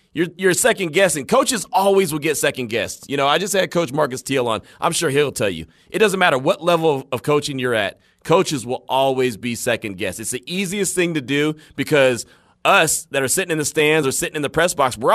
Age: 30-49